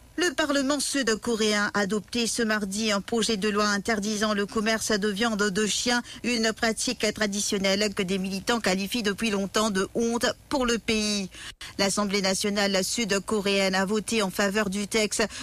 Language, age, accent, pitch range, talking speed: English, 50-69, French, 200-230 Hz, 160 wpm